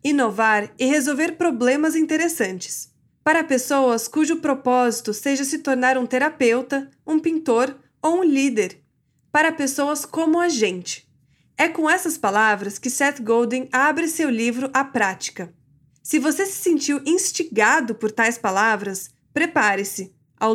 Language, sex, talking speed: Portuguese, female, 135 wpm